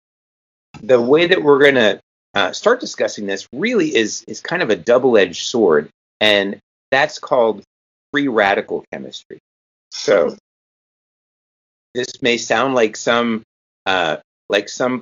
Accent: American